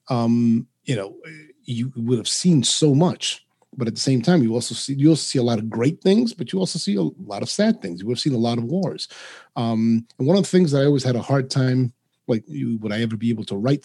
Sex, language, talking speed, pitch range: male, English, 270 wpm, 115-145 Hz